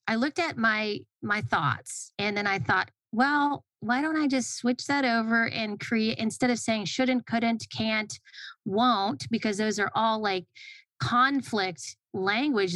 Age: 30-49